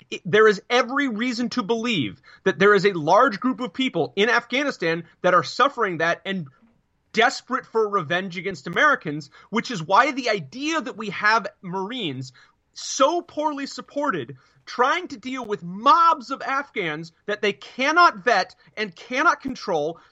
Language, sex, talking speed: English, male, 155 wpm